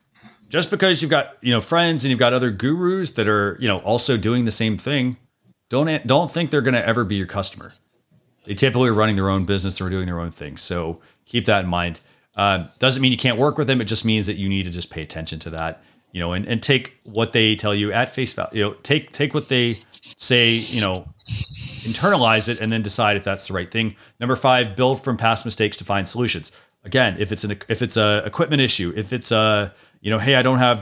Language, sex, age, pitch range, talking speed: English, male, 30-49, 100-125 Hz, 245 wpm